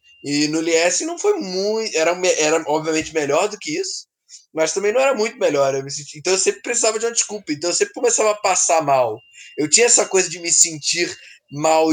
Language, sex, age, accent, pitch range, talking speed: Portuguese, male, 10-29, Brazilian, 145-200 Hz, 220 wpm